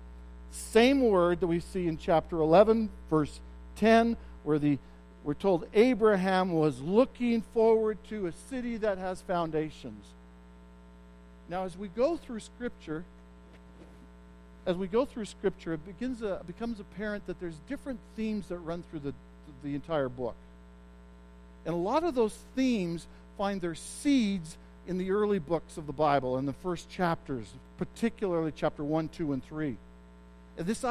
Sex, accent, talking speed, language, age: male, American, 150 wpm, English, 50-69